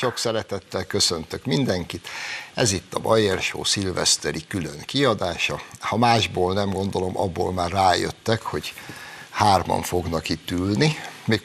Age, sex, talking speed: 60-79, male, 125 wpm